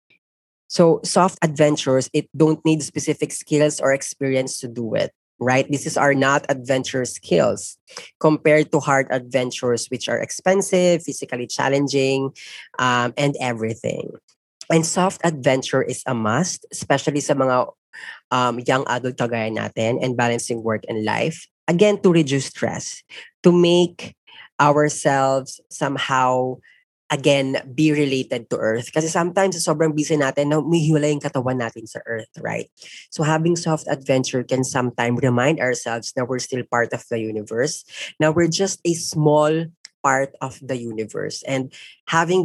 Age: 20-39